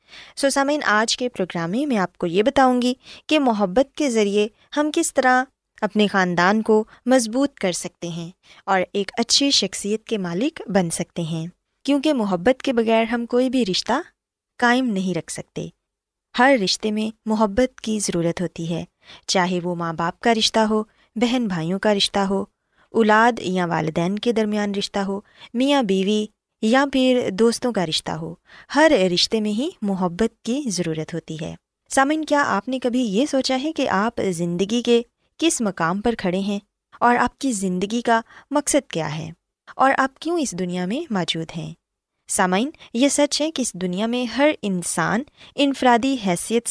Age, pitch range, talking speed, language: 20-39, 185-255 Hz, 175 wpm, Urdu